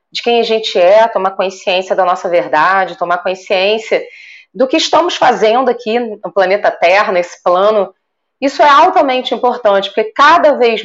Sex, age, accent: female, 30-49, Brazilian